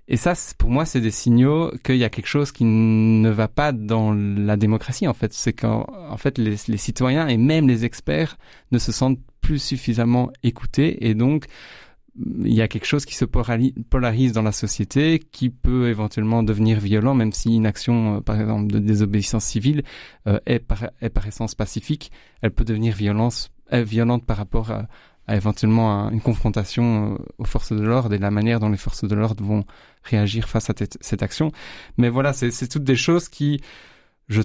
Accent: French